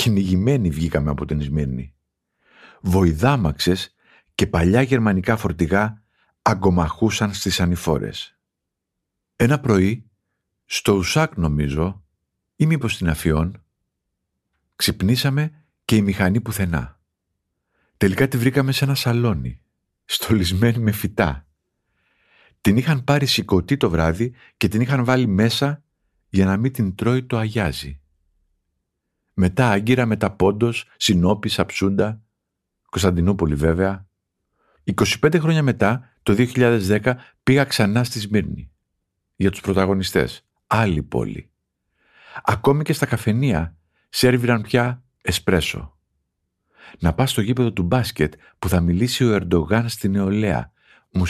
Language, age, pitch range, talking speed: Greek, 50-69, 90-120 Hz, 115 wpm